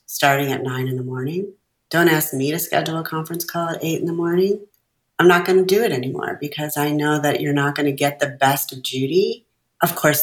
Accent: American